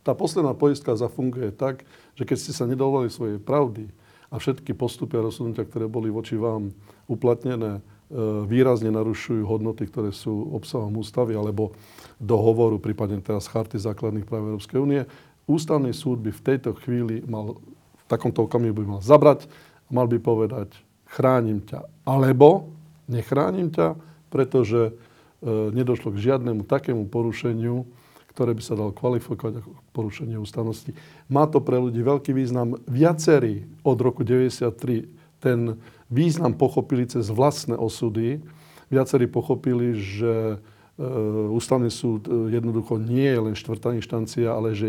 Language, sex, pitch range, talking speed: Slovak, male, 110-135 Hz, 140 wpm